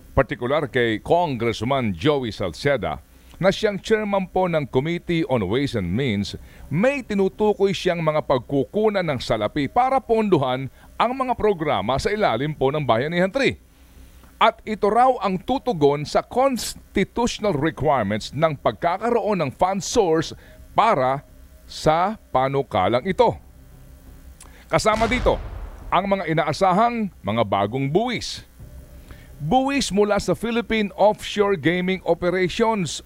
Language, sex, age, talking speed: Filipino, male, 50-69, 120 wpm